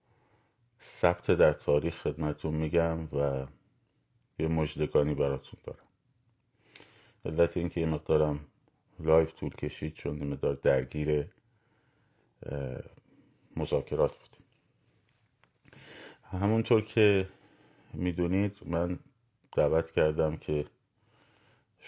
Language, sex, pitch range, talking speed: Persian, male, 80-115 Hz, 80 wpm